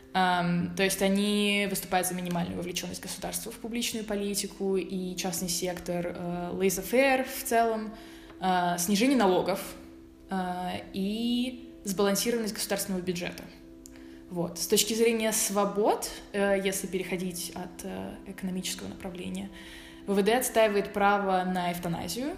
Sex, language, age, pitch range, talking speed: female, Russian, 20-39, 180-205 Hz, 120 wpm